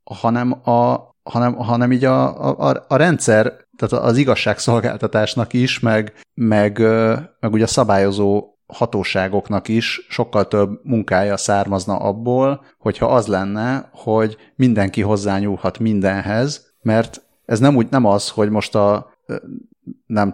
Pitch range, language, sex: 105-130 Hz, Hungarian, male